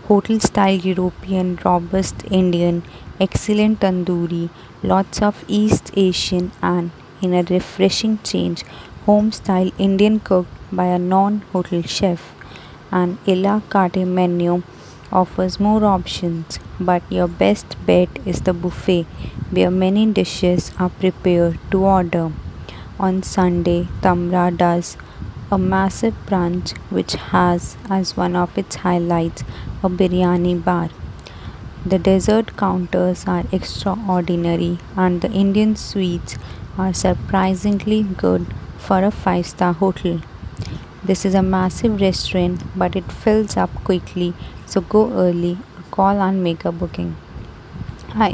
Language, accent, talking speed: English, Indian, 120 wpm